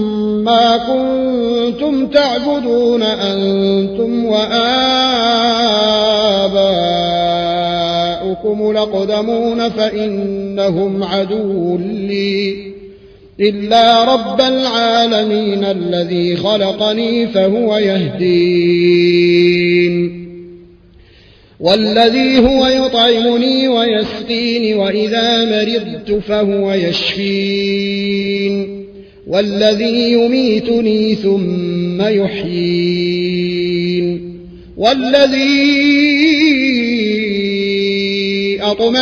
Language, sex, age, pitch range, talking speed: Arabic, male, 30-49, 185-230 Hz, 45 wpm